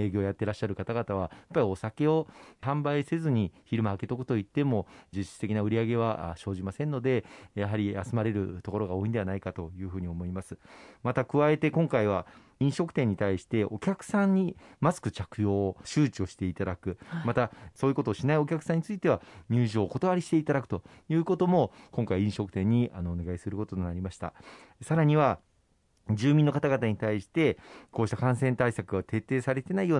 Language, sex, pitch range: Japanese, male, 100-145 Hz